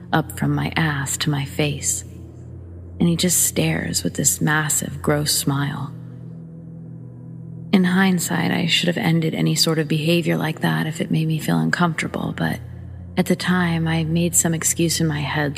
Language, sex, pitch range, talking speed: English, female, 110-160 Hz, 175 wpm